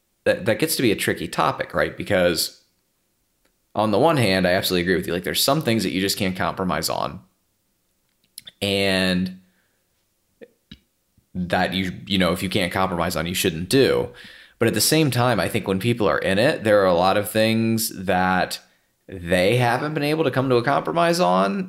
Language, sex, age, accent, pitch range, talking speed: English, male, 30-49, American, 90-105 Hz, 195 wpm